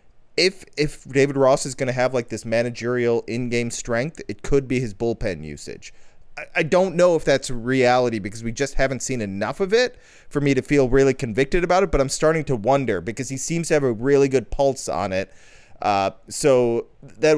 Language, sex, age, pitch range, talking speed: English, male, 30-49, 115-140 Hz, 210 wpm